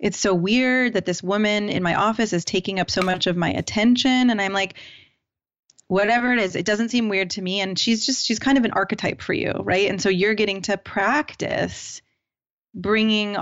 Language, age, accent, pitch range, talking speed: English, 20-39, American, 180-215 Hz, 210 wpm